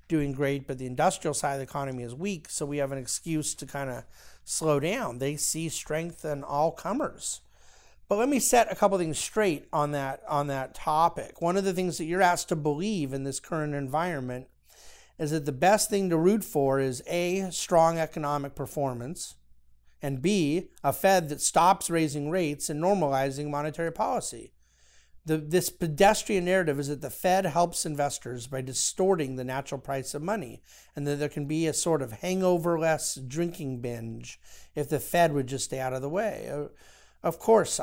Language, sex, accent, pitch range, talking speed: English, male, American, 135-175 Hz, 185 wpm